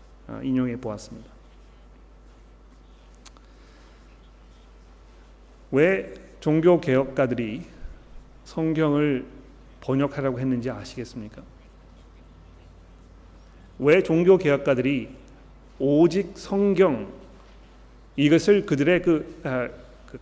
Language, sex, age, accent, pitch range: Korean, male, 40-59, native, 130-165 Hz